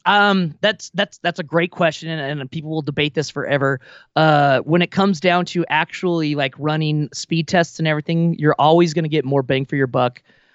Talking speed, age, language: 210 wpm, 30-49, English